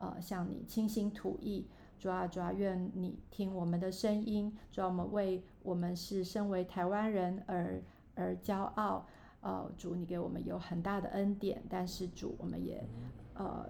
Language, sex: Chinese, female